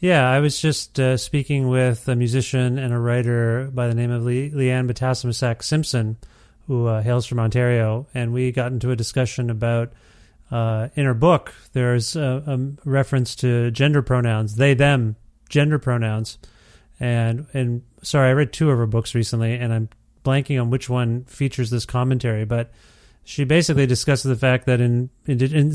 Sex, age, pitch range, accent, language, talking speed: male, 30-49, 120-140 Hz, American, English, 175 wpm